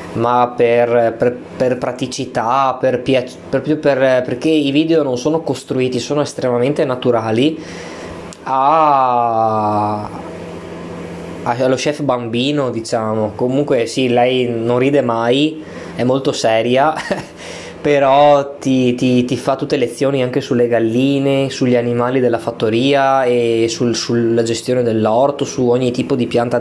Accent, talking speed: native, 130 wpm